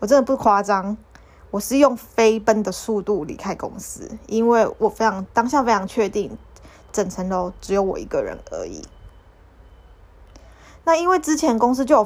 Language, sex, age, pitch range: Chinese, female, 20-39, 205-240 Hz